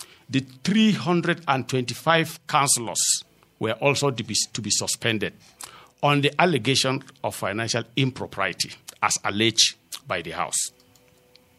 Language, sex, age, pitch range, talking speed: English, male, 50-69, 115-160 Hz, 110 wpm